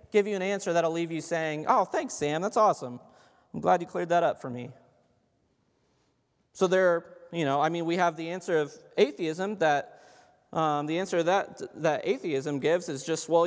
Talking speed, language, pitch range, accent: 200 wpm, English, 150-195 Hz, American